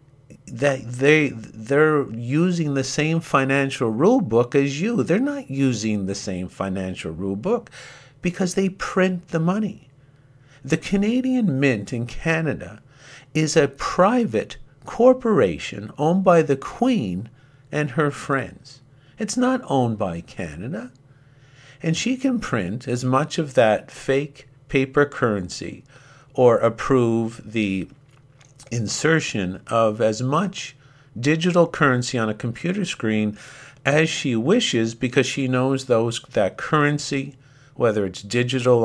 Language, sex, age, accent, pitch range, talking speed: English, male, 50-69, American, 115-150 Hz, 125 wpm